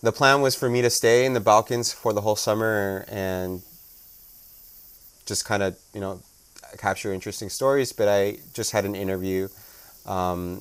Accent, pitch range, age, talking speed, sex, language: American, 90-110 Hz, 30-49, 170 wpm, male, English